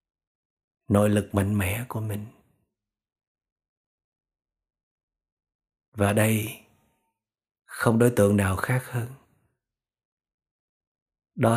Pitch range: 95-115 Hz